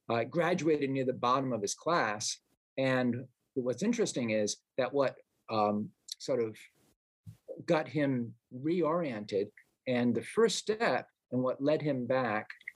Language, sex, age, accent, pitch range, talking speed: English, male, 50-69, American, 115-150 Hz, 135 wpm